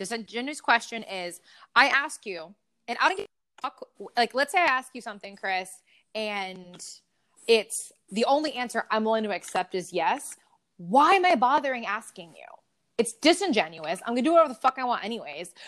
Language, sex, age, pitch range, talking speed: English, female, 20-39, 200-285 Hz, 190 wpm